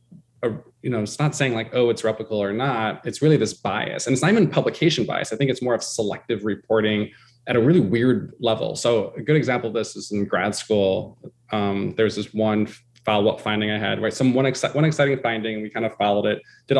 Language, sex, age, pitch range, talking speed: English, male, 20-39, 110-130 Hz, 230 wpm